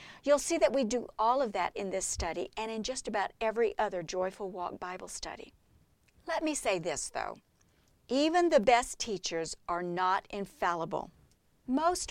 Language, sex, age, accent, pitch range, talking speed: English, female, 50-69, American, 185-255 Hz, 170 wpm